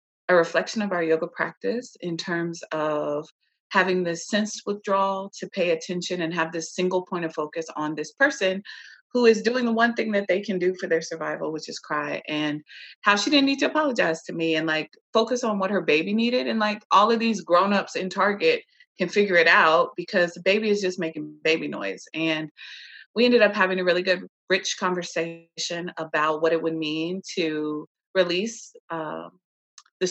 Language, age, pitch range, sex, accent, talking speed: English, 30-49, 160-200 Hz, female, American, 190 wpm